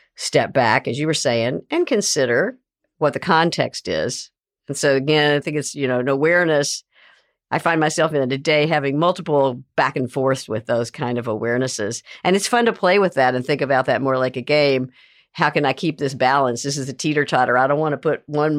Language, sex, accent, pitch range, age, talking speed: English, female, American, 125-155 Hz, 50-69, 225 wpm